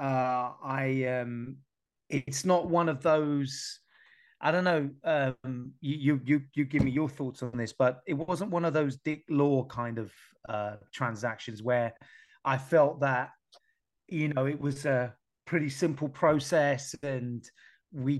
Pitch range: 130-155 Hz